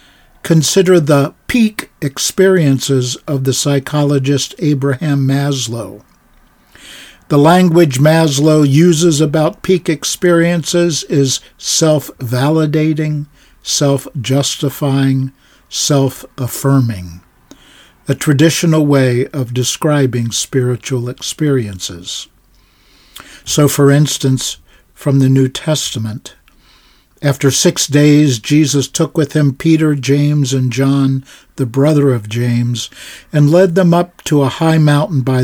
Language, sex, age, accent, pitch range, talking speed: English, male, 60-79, American, 130-155 Hz, 100 wpm